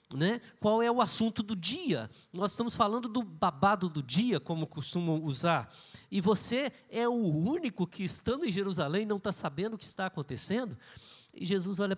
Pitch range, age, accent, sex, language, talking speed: 165-220 Hz, 50-69, Brazilian, male, Portuguese, 180 wpm